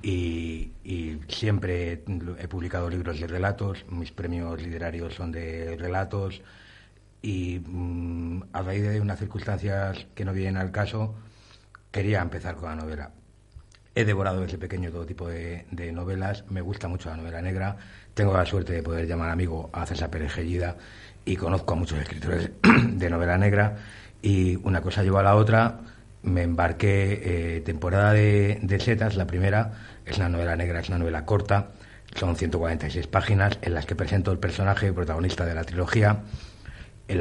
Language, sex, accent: Spanish, male, Spanish